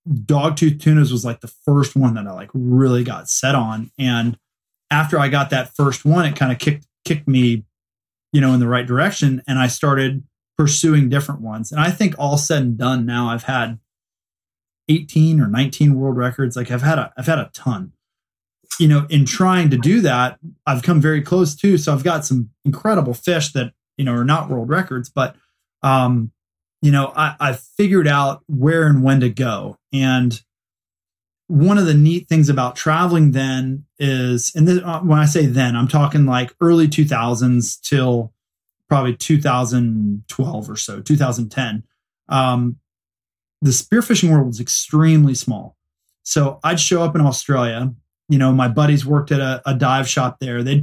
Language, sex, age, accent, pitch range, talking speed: English, male, 20-39, American, 125-150 Hz, 180 wpm